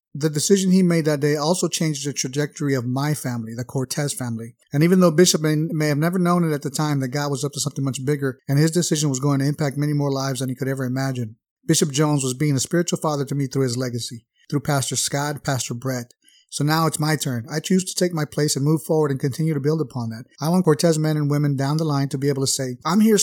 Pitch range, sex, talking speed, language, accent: 135-160 Hz, male, 270 wpm, English, American